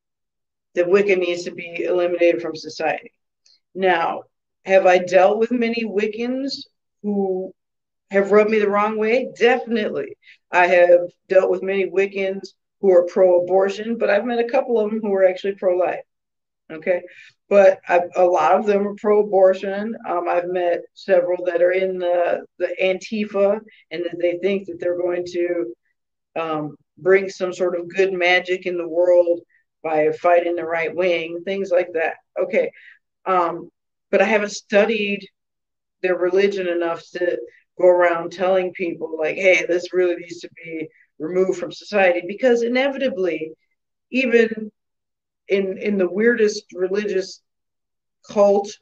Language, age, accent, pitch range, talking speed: English, 40-59, American, 175-205 Hz, 150 wpm